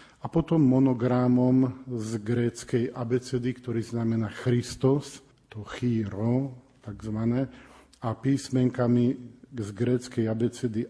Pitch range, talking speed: 115-135 Hz, 95 wpm